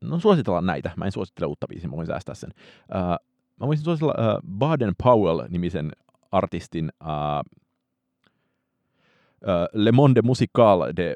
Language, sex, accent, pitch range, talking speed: Finnish, male, native, 85-115 Hz, 110 wpm